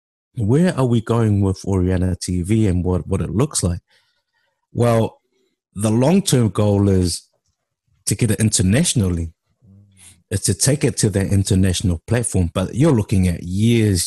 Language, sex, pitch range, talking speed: English, male, 95-120 Hz, 155 wpm